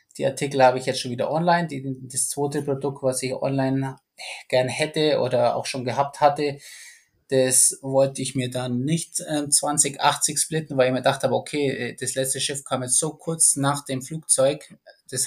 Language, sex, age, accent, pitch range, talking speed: German, male, 20-39, German, 125-140 Hz, 180 wpm